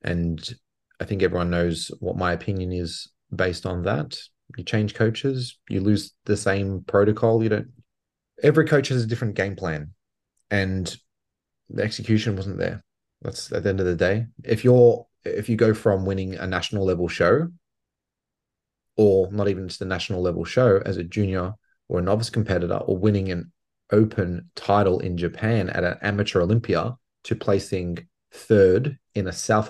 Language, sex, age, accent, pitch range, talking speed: English, male, 30-49, Australian, 95-115 Hz, 170 wpm